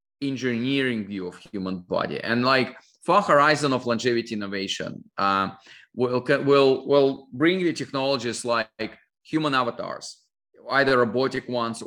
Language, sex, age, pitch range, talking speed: English, male, 20-39, 120-145 Hz, 125 wpm